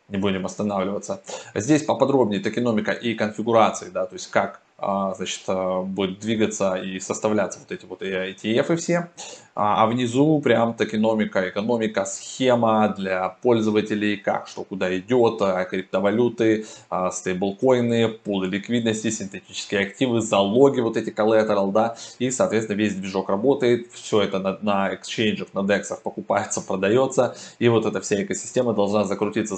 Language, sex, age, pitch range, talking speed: Russian, male, 20-39, 100-120 Hz, 140 wpm